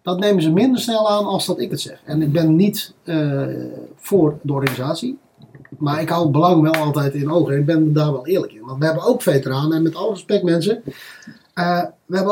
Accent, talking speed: Dutch, 235 wpm